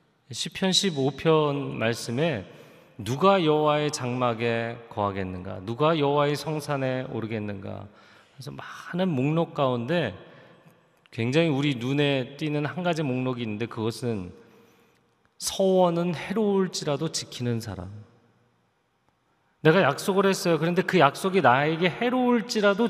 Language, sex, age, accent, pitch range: Korean, male, 30-49, native, 115-155 Hz